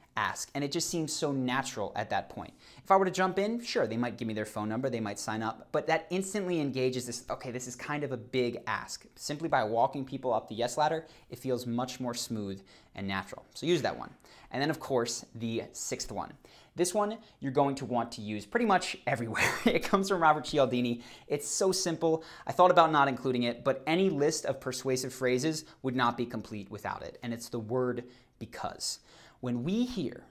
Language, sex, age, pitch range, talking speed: English, male, 20-39, 120-160 Hz, 220 wpm